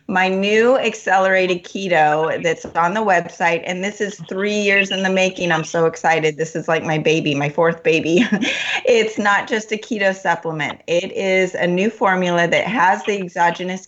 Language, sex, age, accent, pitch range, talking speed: English, female, 30-49, American, 155-190 Hz, 180 wpm